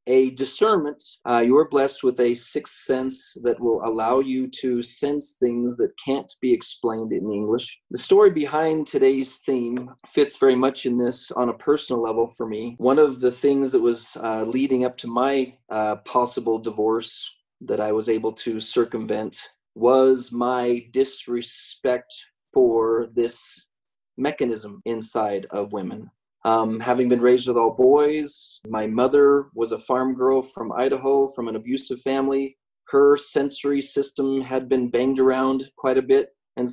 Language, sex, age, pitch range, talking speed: English, male, 30-49, 120-150 Hz, 160 wpm